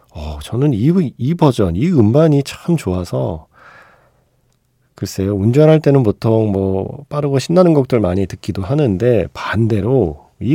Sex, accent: male, native